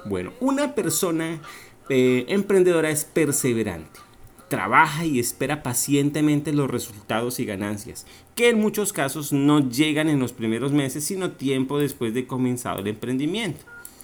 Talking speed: 135 wpm